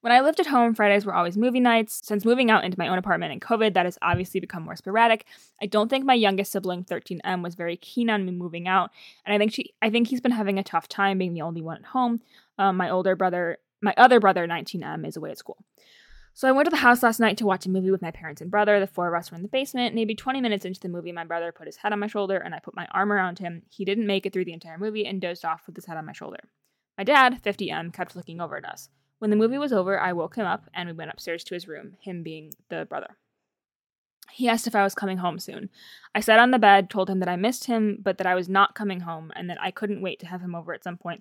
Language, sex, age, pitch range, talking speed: English, female, 10-29, 180-230 Hz, 285 wpm